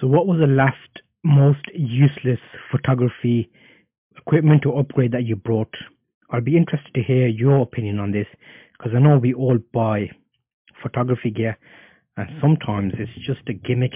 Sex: male